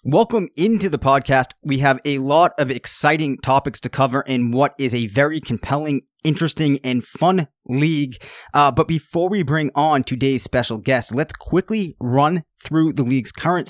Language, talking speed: English, 170 wpm